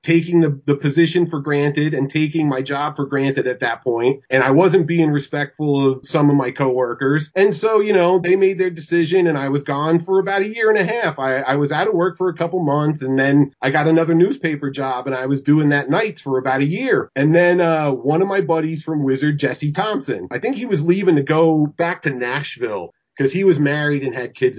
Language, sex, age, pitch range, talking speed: English, male, 30-49, 135-175 Hz, 240 wpm